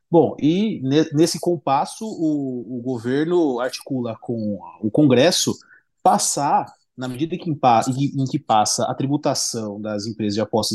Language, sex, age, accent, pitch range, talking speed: Portuguese, male, 30-49, Brazilian, 110-160 Hz, 140 wpm